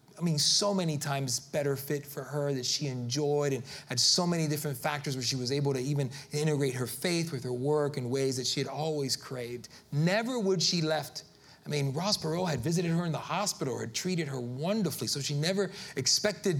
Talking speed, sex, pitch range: 210 wpm, male, 135-185 Hz